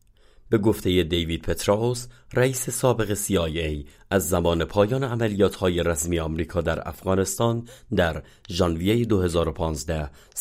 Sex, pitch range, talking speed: male, 80-105 Hz, 105 wpm